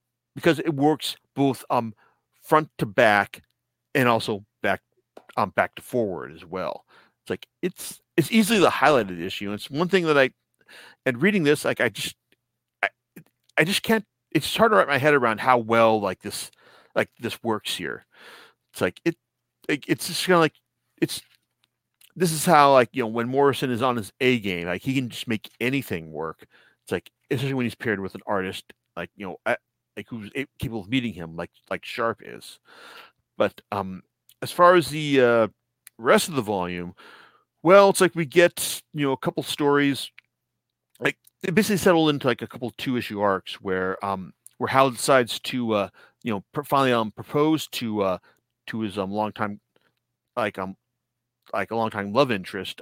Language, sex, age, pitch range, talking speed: English, male, 40-59, 110-150 Hz, 190 wpm